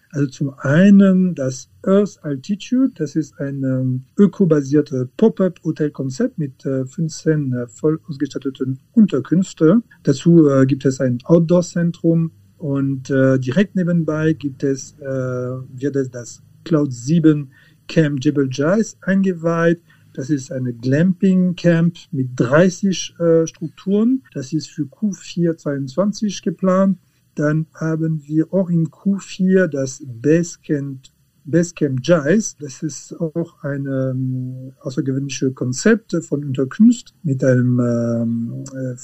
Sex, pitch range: male, 135-170 Hz